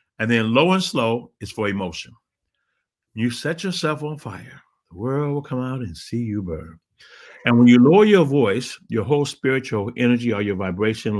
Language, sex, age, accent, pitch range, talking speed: English, male, 50-69, American, 100-135 Hz, 190 wpm